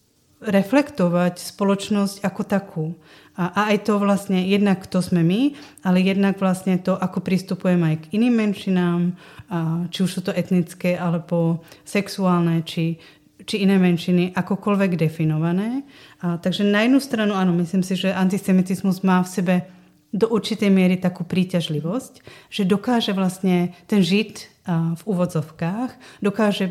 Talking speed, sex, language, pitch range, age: 140 wpm, female, Czech, 170-195 Hz, 30-49